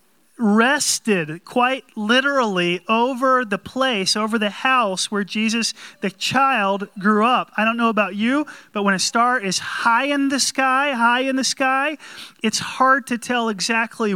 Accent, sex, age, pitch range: American, male, 30-49, 195-260 Hz